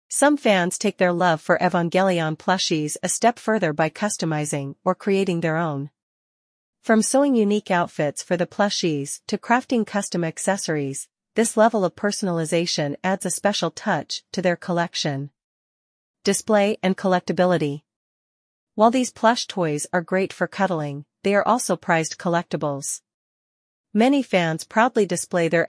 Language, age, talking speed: English, 40-59, 140 wpm